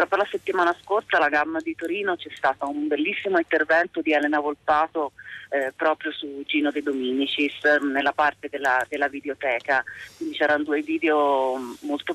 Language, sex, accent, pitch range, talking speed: Italian, female, native, 145-170 Hz, 160 wpm